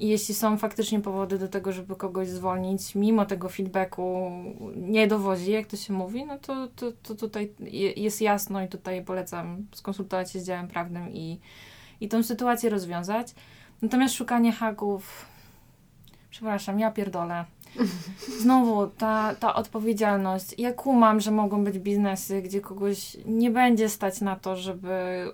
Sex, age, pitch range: female, 20-39, 190-215 Hz